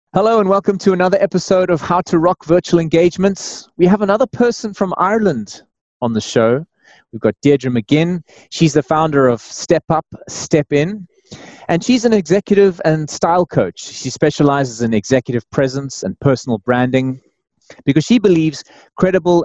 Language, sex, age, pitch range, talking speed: English, male, 30-49, 115-165 Hz, 160 wpm